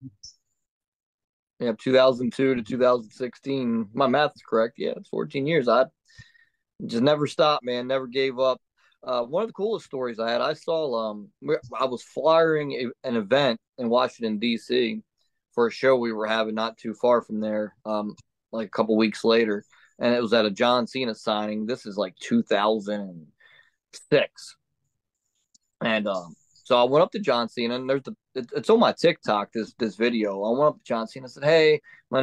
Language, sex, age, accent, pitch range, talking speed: English, male, 20-39, American, 115-140 Hz, 180 wpm